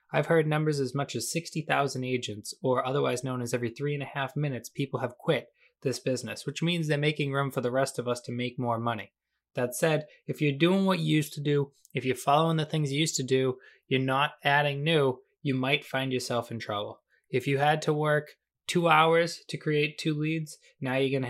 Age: 20-39